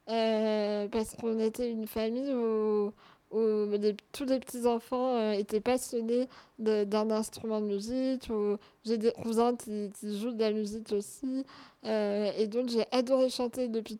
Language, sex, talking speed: French, female, 160 wpm